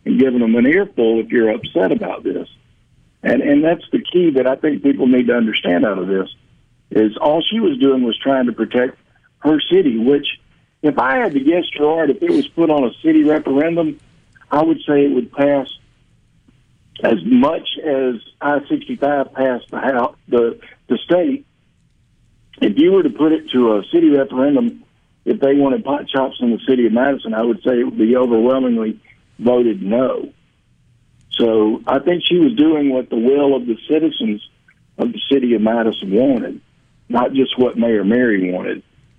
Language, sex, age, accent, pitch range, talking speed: English, male, 60-79, American, 115-155 Hz, 180 wpm